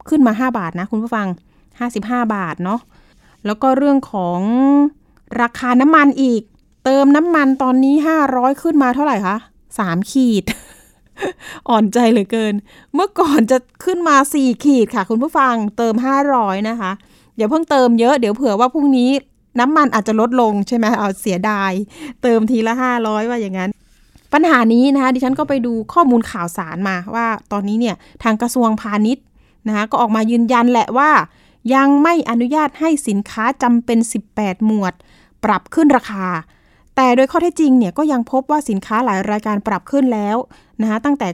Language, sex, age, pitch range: Thai, female, 20-39, 215-270 Hz